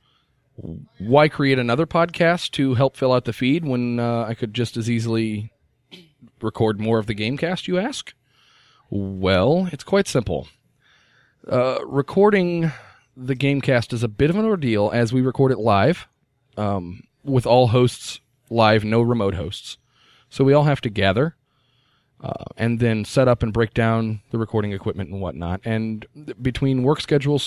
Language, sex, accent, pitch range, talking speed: English, male, American, 110-135 Hz, 160 wpm